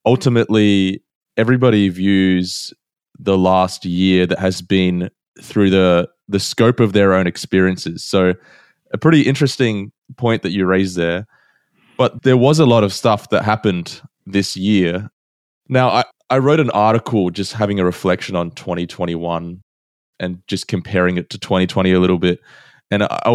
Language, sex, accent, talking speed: English, male, Australian, 155 wpm